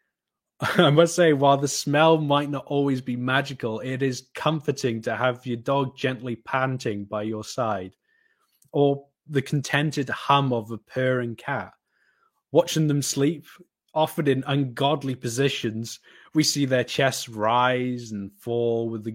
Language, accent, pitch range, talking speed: English, British, 110-140 Hz, 145 wpm